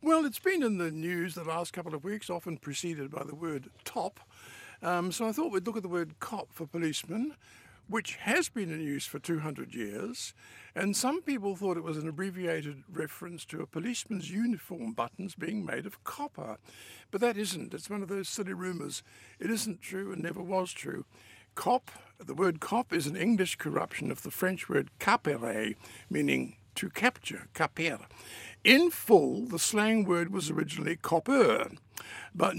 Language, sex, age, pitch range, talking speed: English, male, 60-79, 165-220 Hz, 180 wpm